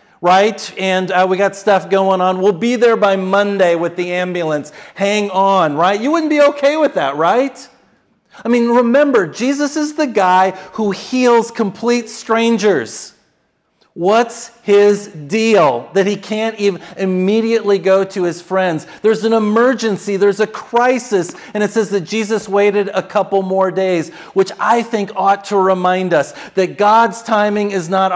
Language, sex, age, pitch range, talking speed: English, male, 40-59, 190-230 Hz, 165 wpm